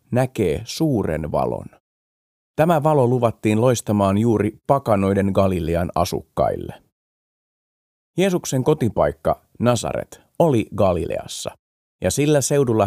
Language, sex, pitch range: Finnish, male, 95-125 Hz